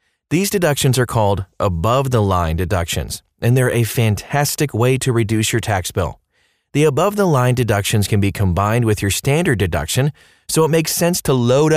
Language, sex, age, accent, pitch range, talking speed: English, male, 30-49, American, 100-135 Hz, 170 wpm